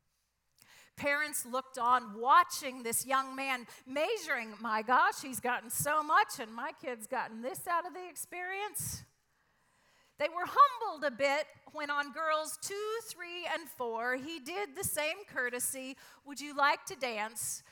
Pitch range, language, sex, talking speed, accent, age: 255-350 Hz, English, female, 150 wpm, American, 40-59